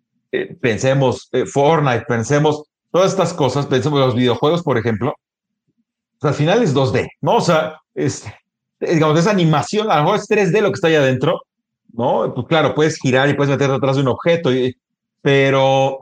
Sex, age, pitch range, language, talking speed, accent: male, 40-59, 135-190 Hz, Spanish, 185 wpm, Mexican